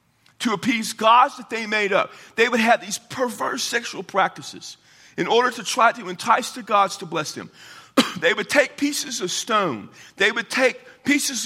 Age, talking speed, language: 50-69, 185 wpm, English